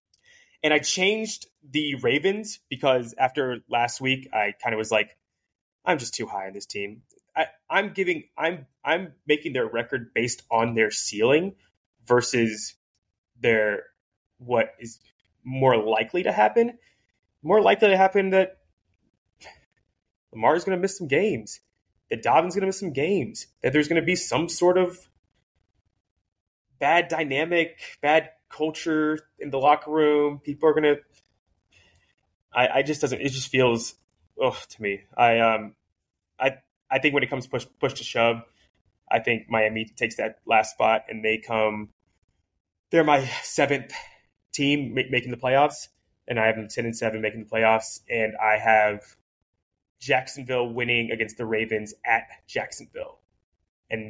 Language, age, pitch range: English, 20-39, 110-155 Hz